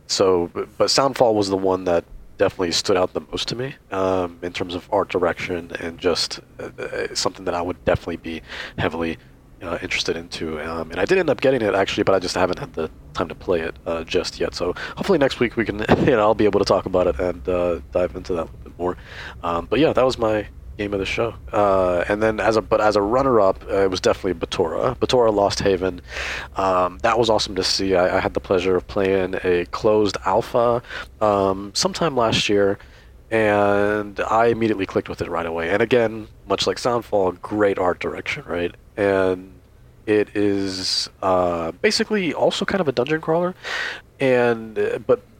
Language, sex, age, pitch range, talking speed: English, male, 30-49, 90-115 Hz, 205 wpm